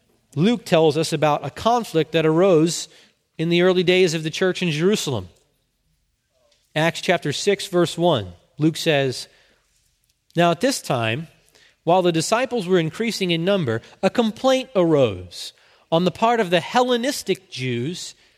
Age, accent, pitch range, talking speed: 30-49, American, 160-210 Hz, 145 wpm